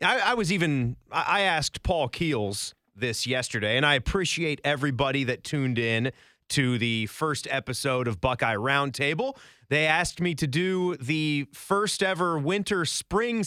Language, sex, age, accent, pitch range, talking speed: English, male, 30-49, American, 130-190 Hz, 145 wpm